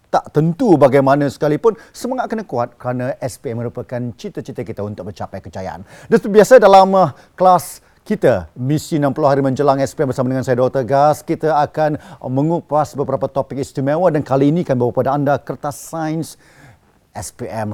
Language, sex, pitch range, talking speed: Malay, male, 120-180 Hz, 155 wpm